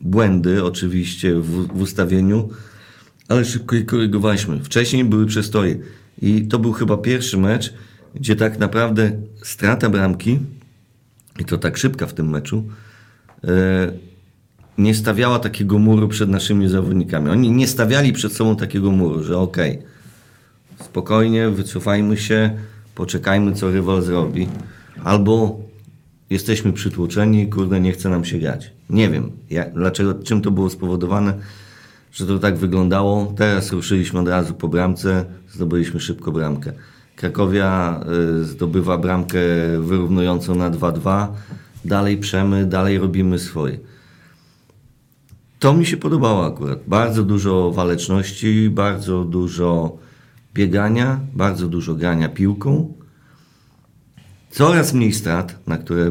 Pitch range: 90-110 Hz